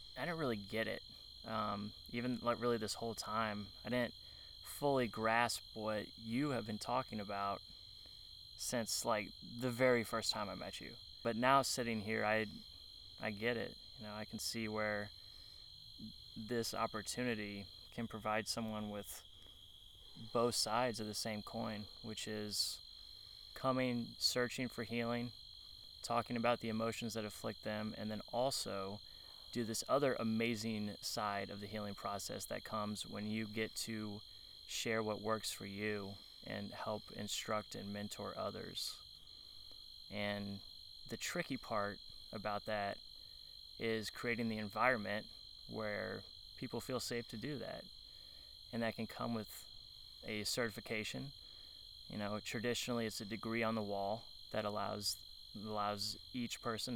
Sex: male